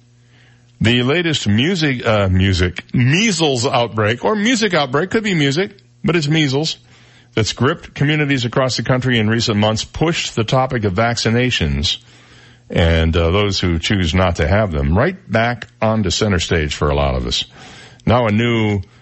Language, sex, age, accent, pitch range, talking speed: English, male, 50-69, American, 95-125 Hz, 165 wpm